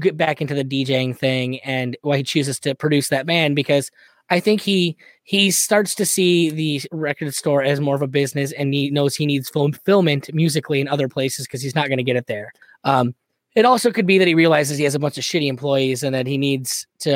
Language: English